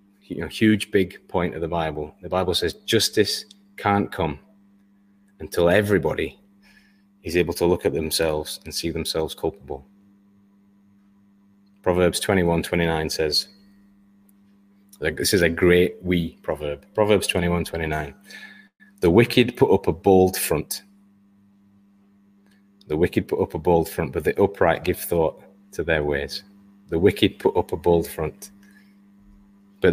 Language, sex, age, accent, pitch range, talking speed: English, male, 30-49, British, 90-100 Hz, 140 wpm